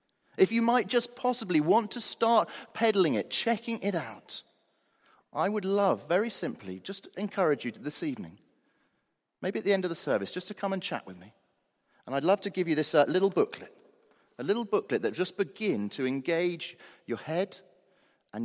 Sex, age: male, 40-59